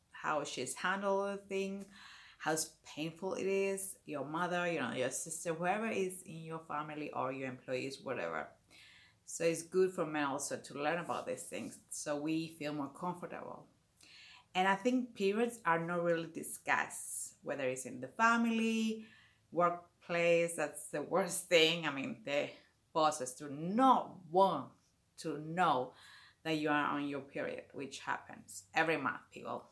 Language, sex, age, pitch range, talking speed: English, female, 30-49, 150-190 Hz, 155 wpm